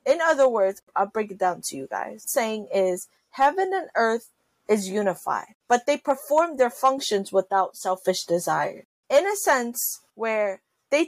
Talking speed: 160 wpm